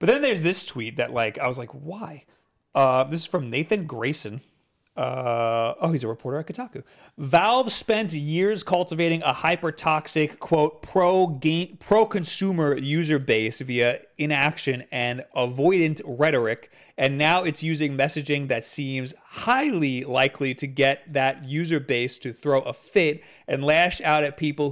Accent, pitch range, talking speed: American, 135-170 Hz, 150 wpm